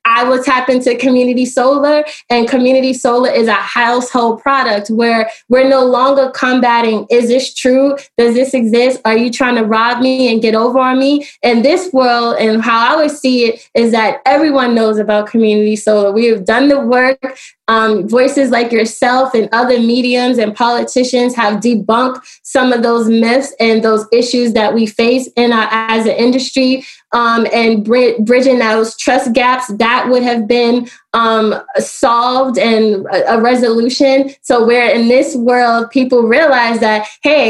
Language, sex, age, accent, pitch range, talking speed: English, female, 20-39, American, 230-265 Hz, 170 wpm